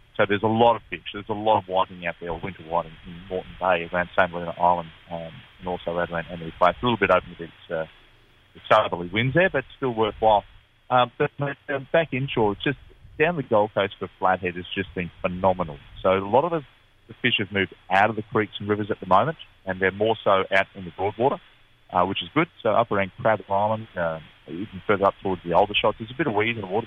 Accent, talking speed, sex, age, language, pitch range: Australian, 250 wpm, male, 30-49, English, 95-110 Hz